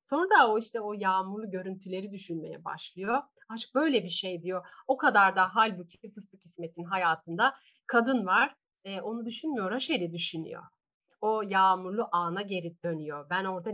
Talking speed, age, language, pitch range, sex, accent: 155 wpm, 30-49, Turkish, 185-235 Hz, female, native